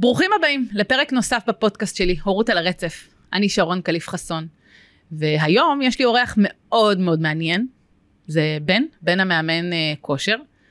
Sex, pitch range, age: female, 165-220 Hz, 30-49